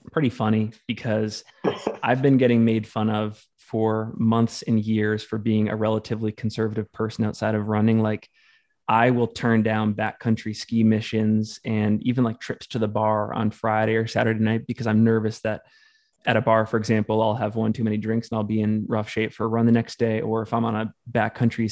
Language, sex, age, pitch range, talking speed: English, male, 20-39, 110-120 Hz, 205 wpm